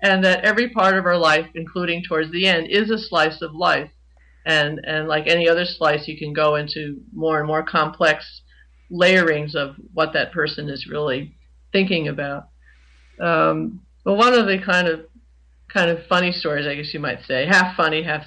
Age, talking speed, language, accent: 50-69, 190 wpm, English, American